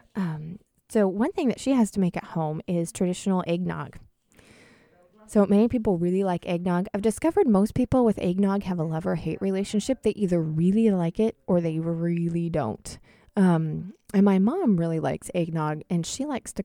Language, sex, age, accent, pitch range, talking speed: English, female, 20-39, American, 165-200 Hz, 185 wpm